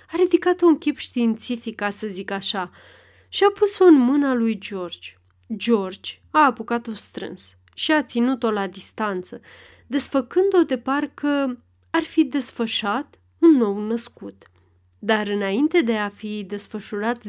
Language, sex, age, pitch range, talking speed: Romanian, female, 30-49, 195-270 Hz, 135 wpm